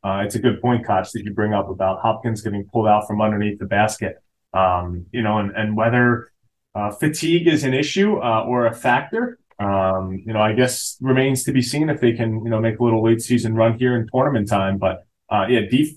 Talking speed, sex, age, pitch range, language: 235 wpm, male, 20-39, 100-130 Hz, English